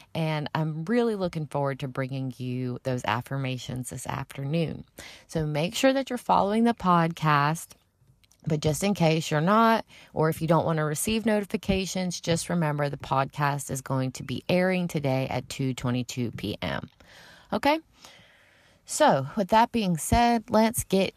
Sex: female